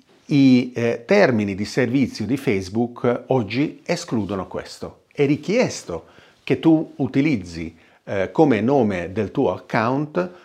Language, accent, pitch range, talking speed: Italian, native, 100-140 Hz, 125 wpm